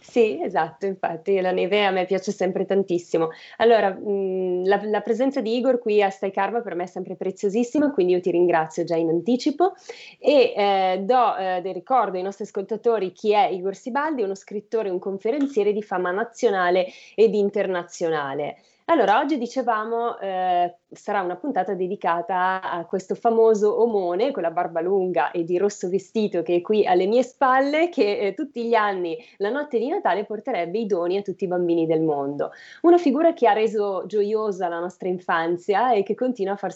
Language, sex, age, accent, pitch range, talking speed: Italian, female, 20-39, native, 180-230 Hz, 185 wpm